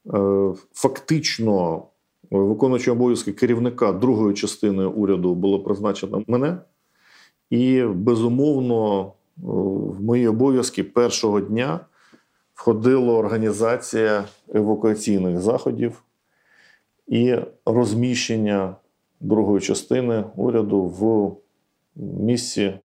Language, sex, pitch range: Ukrainian, male, 100-120 Hz